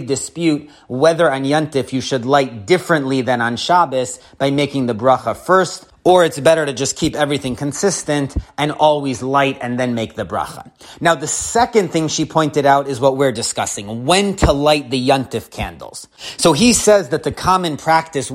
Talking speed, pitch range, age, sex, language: 185 wpm, 130-165 Hz, 30-49, male, English